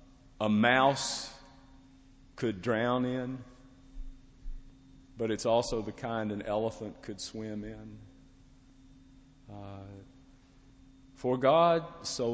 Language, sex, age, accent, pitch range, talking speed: English, male, 50-69, American, 110-135 Hz, 90 wpm